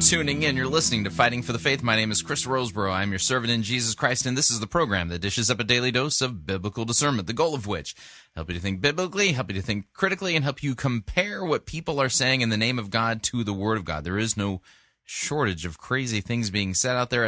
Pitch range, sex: 100-130 Hz, male